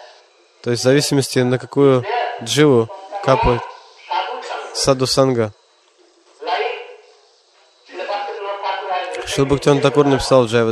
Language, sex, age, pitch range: Russian, male, 20-39, 130-190 Hz